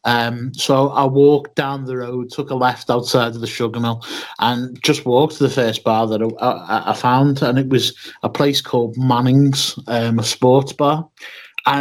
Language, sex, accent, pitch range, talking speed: English, male, British, 120-145 Hz, 200 wpm